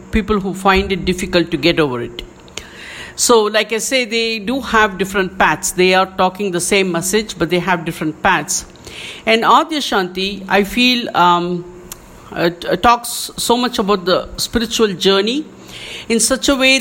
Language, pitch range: English, 180-230 Hz